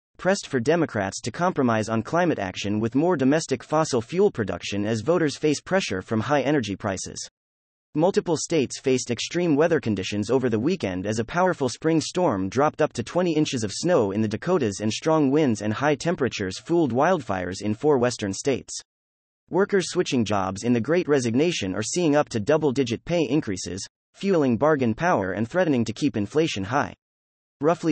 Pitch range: 105-155 Hz